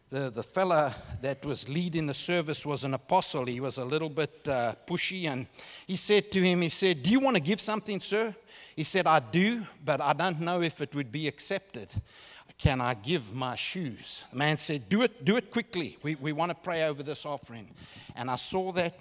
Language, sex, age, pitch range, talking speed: English, male, 60-79, 120-165 Hz, 220 wpm